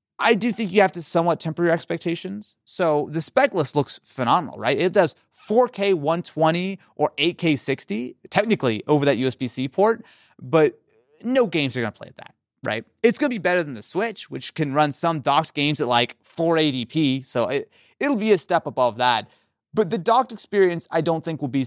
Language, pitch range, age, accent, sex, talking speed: English, 125-190 Hz, 30-49, American, male, 200 wpm